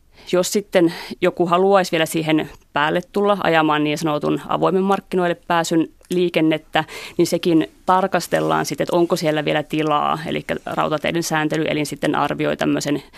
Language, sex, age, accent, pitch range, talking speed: Finnish, female, 30-49, native, 150-175 Hz, 135 wpm